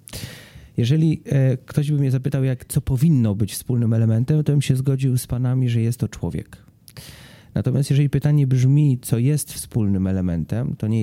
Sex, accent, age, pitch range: male, native, 30-49, 110-130 Hz